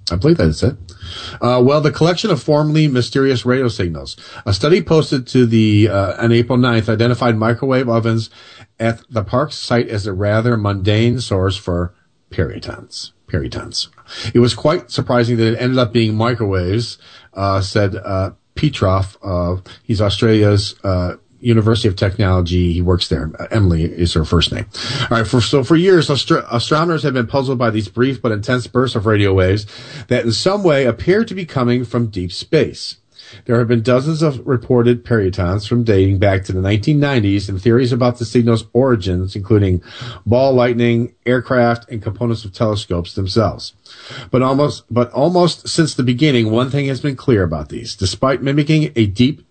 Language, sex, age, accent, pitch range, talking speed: English, male, 40-59, American, 100-125 Hz, 175 wpm